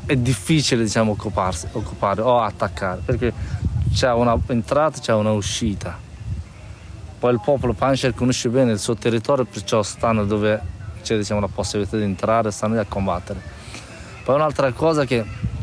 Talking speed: 155 wpm